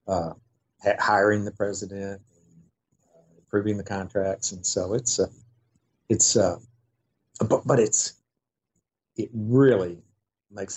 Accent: American